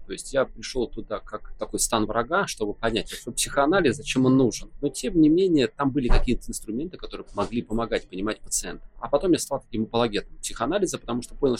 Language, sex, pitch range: Russian, male, 110-140 Hz